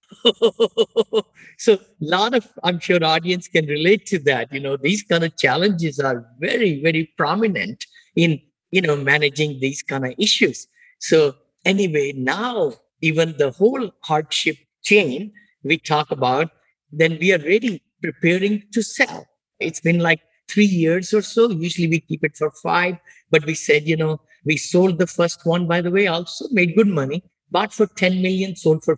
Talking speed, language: 170 wpm, English